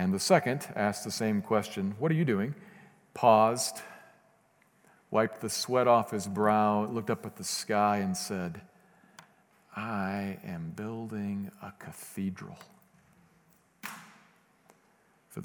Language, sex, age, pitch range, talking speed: English, male, 50-69, 100-170 Hz, 120 wpm